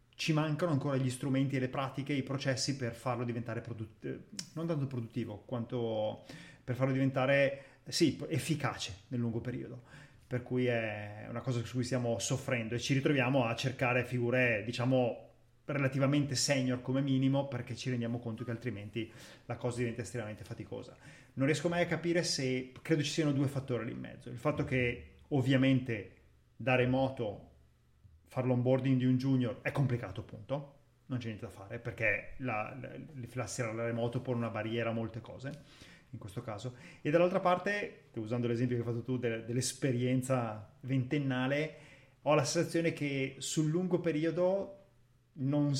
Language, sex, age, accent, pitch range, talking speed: Italian, male, 30-49, native, 120-145 Hz, 160 wpm